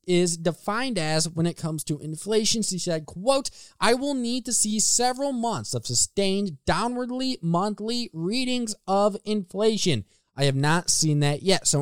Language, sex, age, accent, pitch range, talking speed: English, male, 20-39, American, 160-205 Hz, 165 wpm